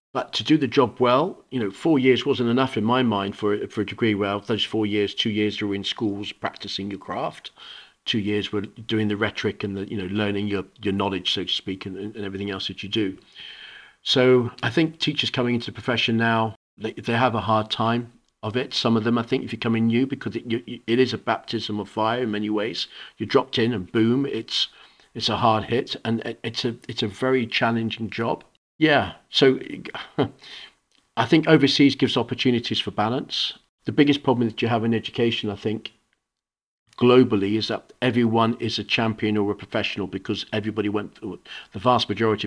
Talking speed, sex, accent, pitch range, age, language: 210 wpm, male, British, 105-120 Hz, 40-59, English